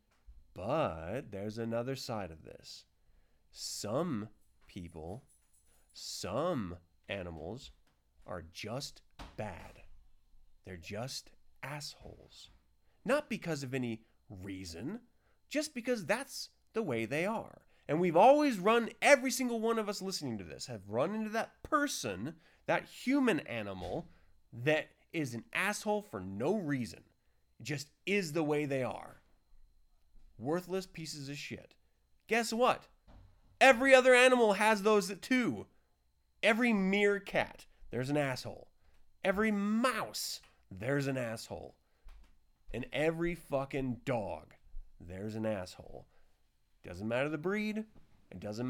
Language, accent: English, American